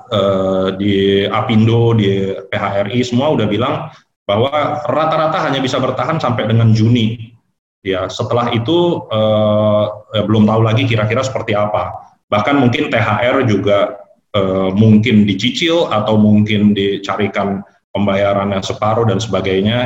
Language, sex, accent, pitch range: Indonesian, male, native, 100-120 Hz